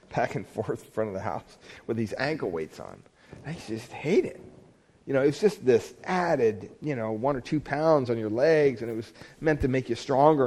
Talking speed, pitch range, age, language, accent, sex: 230 wpm, 130-160 Hz, 40-59, English, American, male